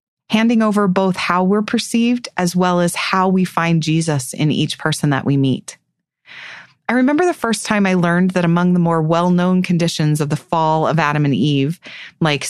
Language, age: English, 30-49